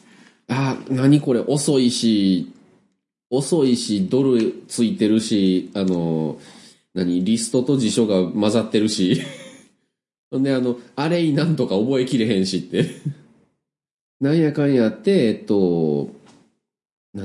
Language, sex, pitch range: Japanese, male, 95-155 Hz